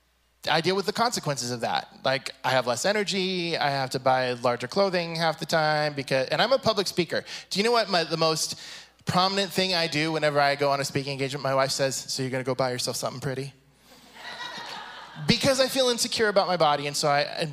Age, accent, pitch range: 20-39, American, 145-195 Hz